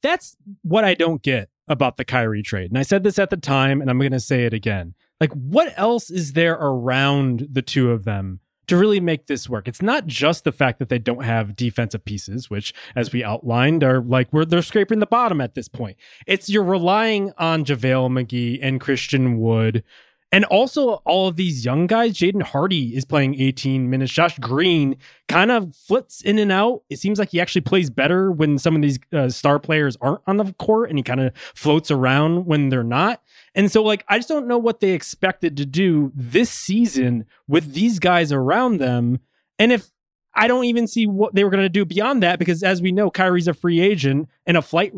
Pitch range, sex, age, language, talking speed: 130-195 Hz, male, 20-39, English, 220 wpm